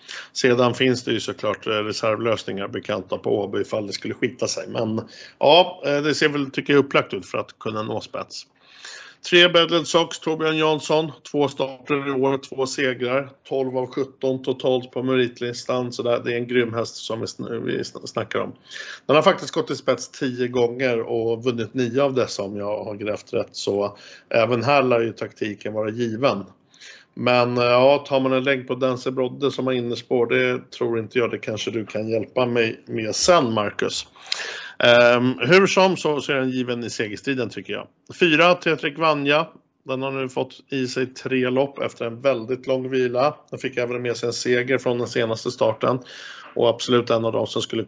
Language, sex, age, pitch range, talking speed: Swedish, male, 50-69, 120-140 Hz, 185 wpm